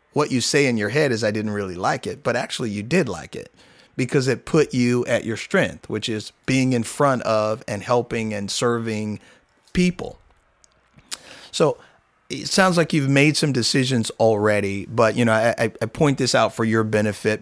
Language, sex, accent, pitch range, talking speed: English, male, American, 105-130 Hz, 195 wpm